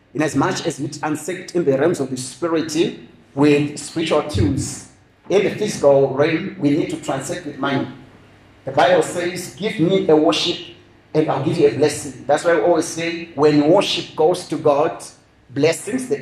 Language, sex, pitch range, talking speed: English, male, 145-170 Hz, 185 wpm